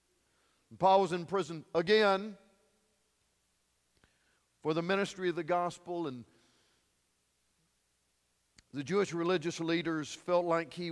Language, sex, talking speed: English, male, 105 wpm